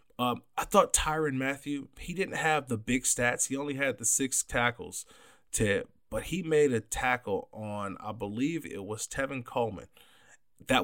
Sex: male